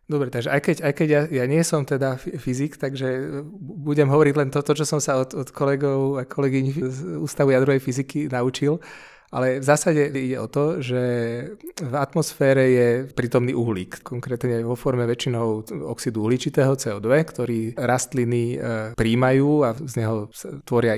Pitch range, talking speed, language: 120-140 Hz, 165 wpm, Czech